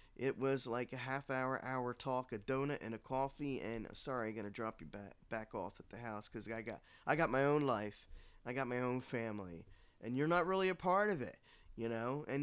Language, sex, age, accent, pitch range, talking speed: English, male, 40-59, American, 110-135 Hz, 230 wpm